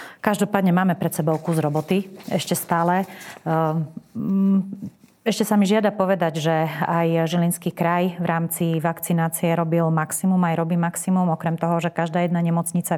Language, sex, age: Slovak, female, 30-49